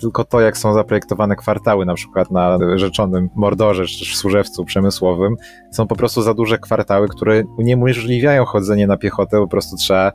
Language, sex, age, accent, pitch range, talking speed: Polish, male, 30-49, native, 95-105 Hz, 185 wpm